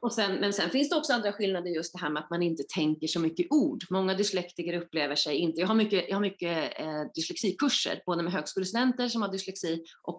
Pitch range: 160-220 Hz